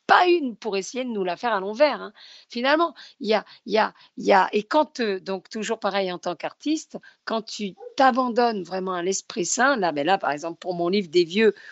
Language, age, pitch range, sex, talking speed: French, 50-69, 195-255 Hz, female, 235 wpm